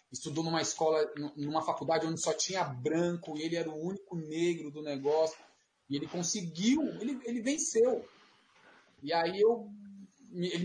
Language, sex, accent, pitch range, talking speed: Portuguese, male, Brazilian, 150-190 Hz, 150 wpm